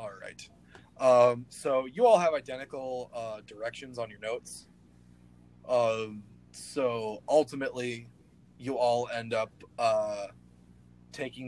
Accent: American